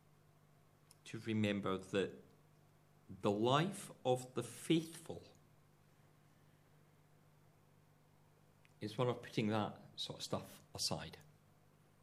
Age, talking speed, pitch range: 50-69, 80 wpm, 105-150 Hz